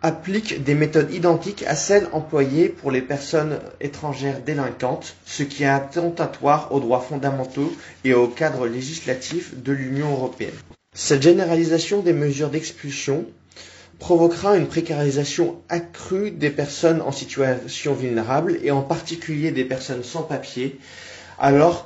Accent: French